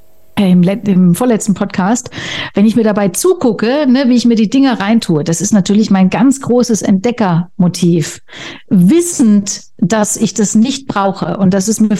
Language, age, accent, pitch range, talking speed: German, 50-69, German, 185-240 Hz, 160 wpm